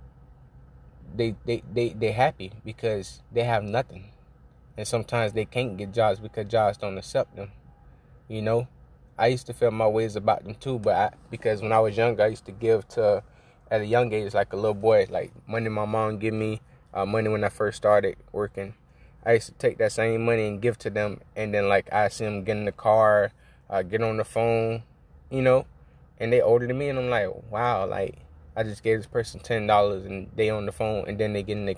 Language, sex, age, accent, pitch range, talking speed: English, male, 20-39, American, 105-120 Hz, 225 wpm